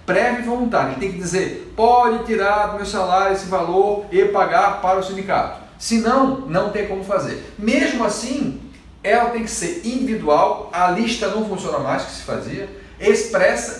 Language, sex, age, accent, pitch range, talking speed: Portuguese, male, 40-59, Brazilian, 175-225 Hz, 180 wpm